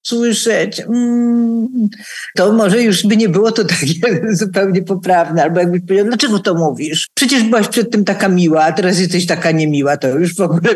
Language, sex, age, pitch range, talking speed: Polish, female, 50-69, 175-220 Hz, 190 wpm